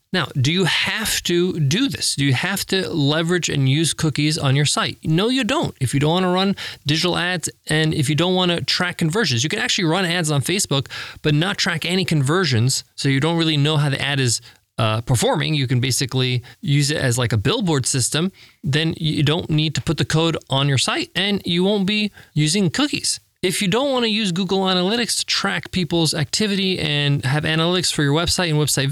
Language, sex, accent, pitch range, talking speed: English, male, American, 140-185 Hz, 220 wpm